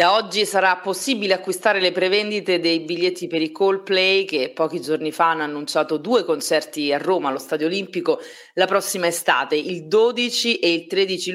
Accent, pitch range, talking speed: native, 145-190 Hz, 175 wpm